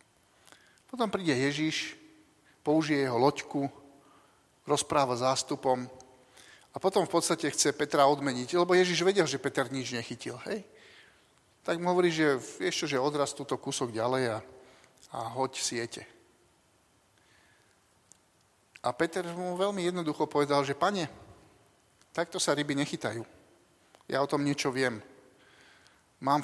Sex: male